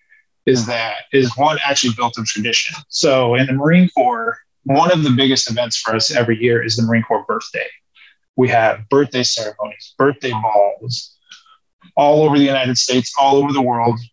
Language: English